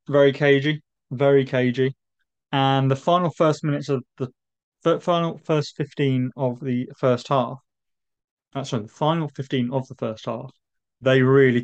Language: English